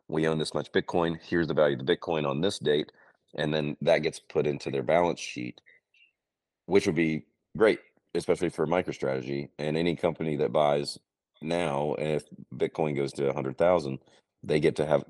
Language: English